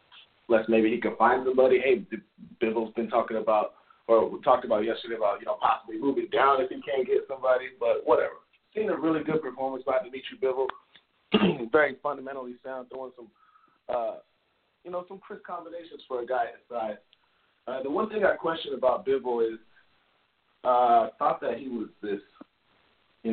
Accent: American